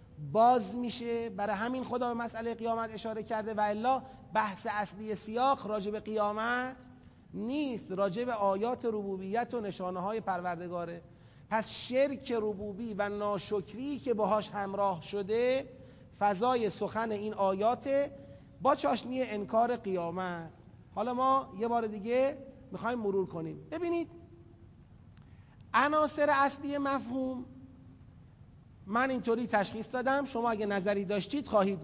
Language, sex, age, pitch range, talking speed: Persian, male, 30-49, 190-245 Hz, 115 wpm